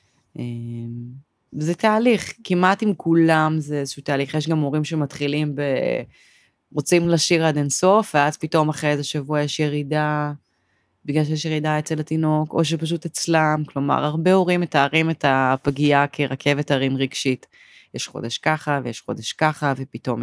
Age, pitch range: 20-39, 130-160 Hz